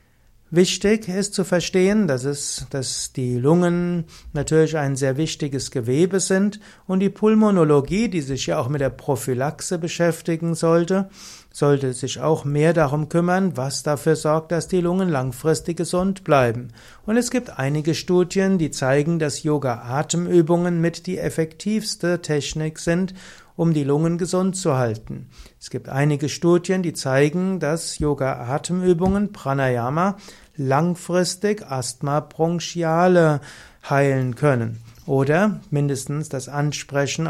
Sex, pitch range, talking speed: male, 140-175 Hz, 125 wpm